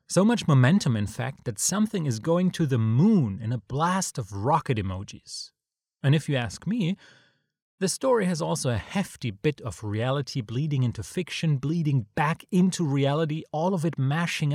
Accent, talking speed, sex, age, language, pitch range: German, 175 wpm, male, 30-49, English, 110-165 Hz